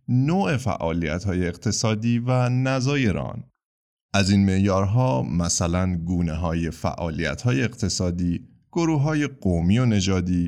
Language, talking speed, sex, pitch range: Persian, 110 wpm, male, 90-135 Hz